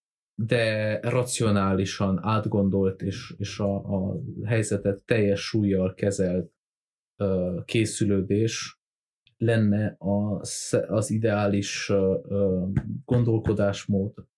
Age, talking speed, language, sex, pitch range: 30-49, 70 wpm, Hungarian, male, 100-120 Hz